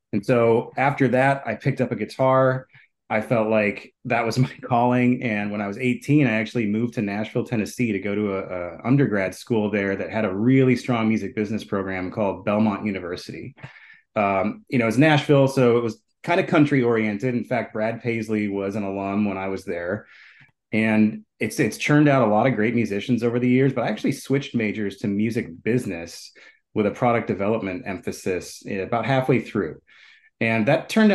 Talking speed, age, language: 195 wpm, 30-49, English